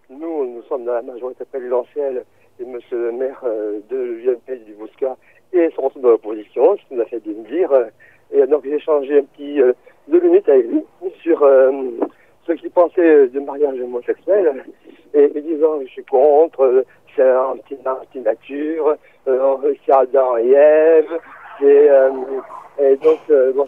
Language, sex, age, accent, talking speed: French, male, 60-79, French, 160 wpm